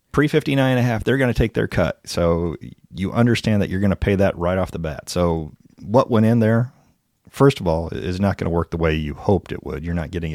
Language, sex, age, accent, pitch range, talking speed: English, male, 40-59, American, 80-100 Hz, 260 wpm